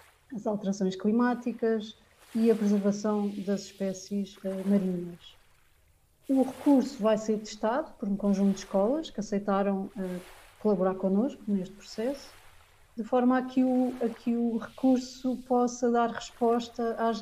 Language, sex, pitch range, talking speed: Portuguese, female, 200-240 Hz, 125 wpm